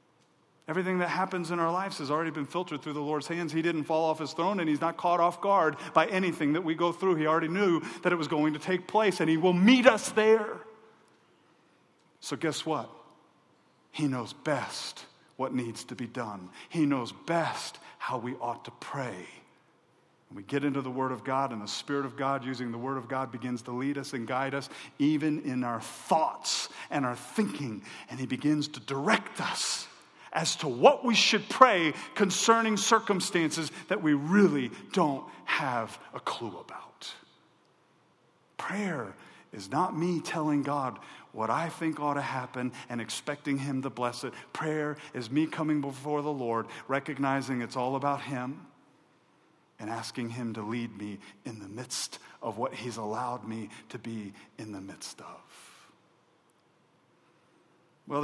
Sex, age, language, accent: male, 40-59, English, American